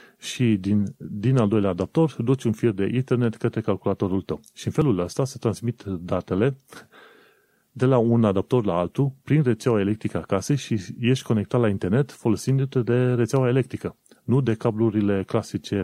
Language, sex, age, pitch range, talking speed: Romanian, male, 30-49, 100-125 Hz, 165 wpm